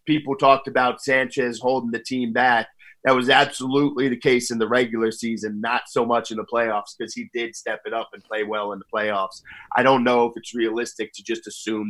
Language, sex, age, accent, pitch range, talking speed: English, male, 30-49, American, 105-125 Hz, 220 wpm